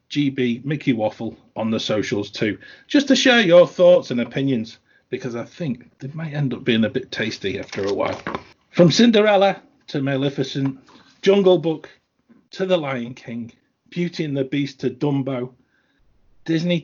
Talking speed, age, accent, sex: 160 wpm, 40-59, British, male